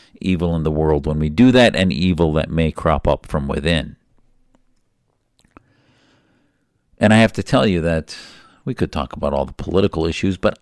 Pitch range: 90-115 Hz